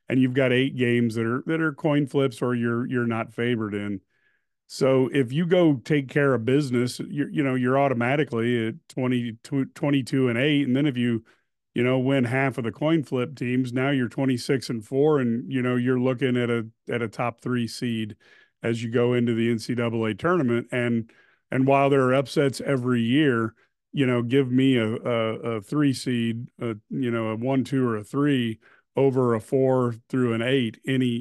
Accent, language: American, English